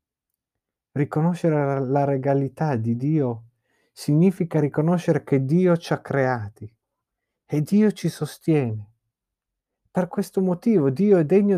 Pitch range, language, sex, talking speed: 120-160 Hz, Italian, male, 115 wpm